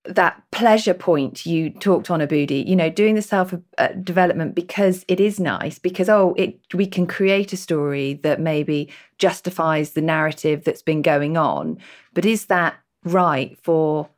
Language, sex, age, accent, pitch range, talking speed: English, female, 40-59, British, 160-205 Hz, 155 wpm